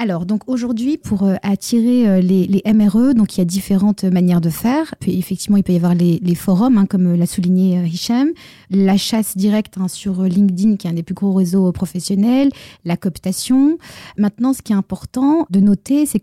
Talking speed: 200 wpm